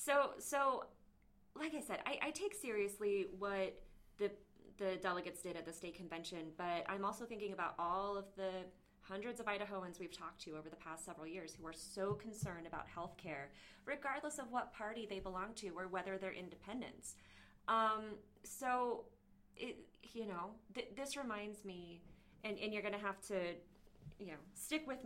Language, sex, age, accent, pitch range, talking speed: English, female, 30-49, American, 165-205 Hz, 180 wpm